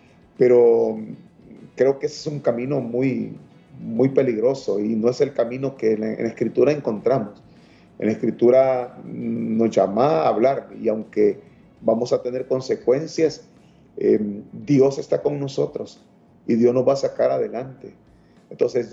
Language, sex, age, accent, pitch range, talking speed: Spanish, male, 40-59, Venezuelan, 120-185 Hz, 145 wpm